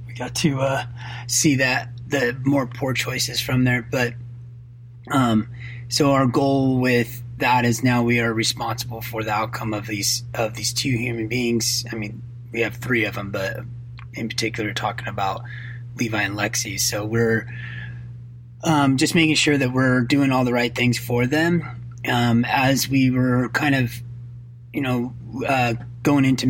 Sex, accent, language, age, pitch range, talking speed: male, American, English, 30-49, 115-125 Hz, 170 wpm